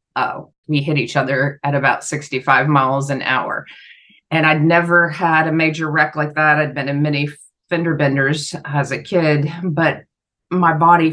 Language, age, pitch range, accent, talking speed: English, 30-49, 145-170 Hz, American, 180 wpm